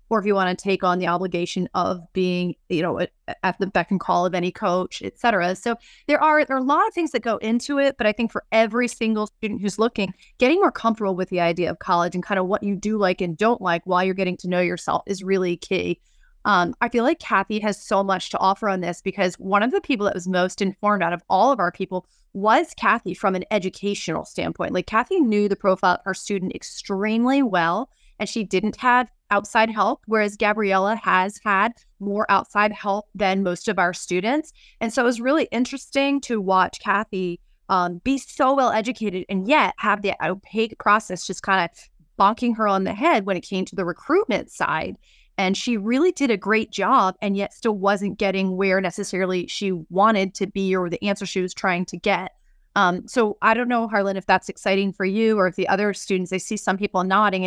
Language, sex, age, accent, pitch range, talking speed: English, female, 30-49, American, 185-225 Hz, 220 wpm